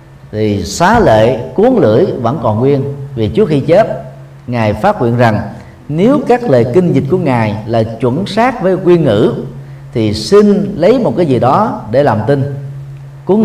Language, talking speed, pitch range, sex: Vietnamese, 180 wpm, 115-155 Hz, male